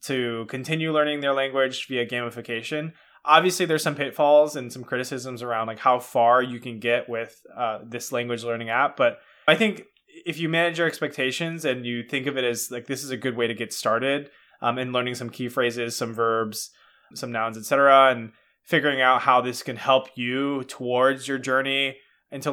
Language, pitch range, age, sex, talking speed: English, 120-145 Hz, 20-39, male, 195 wpm